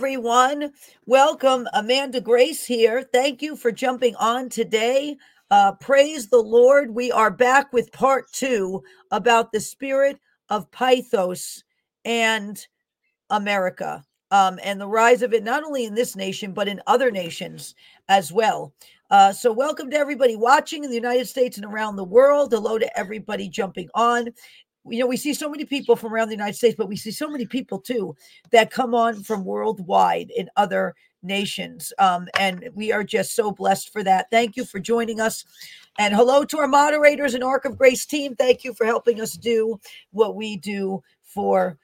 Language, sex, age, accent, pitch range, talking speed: English, female, 40-59, American, 200-265 Hz, 180 wpm